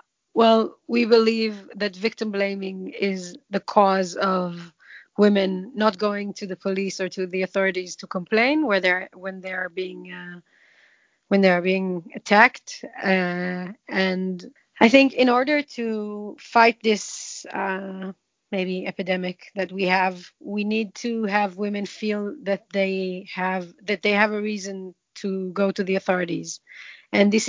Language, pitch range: English, 185-220 Hz